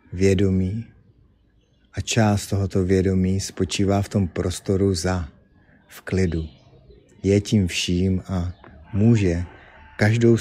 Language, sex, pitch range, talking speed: Czech, male, 90-100 Hz, 105 wpm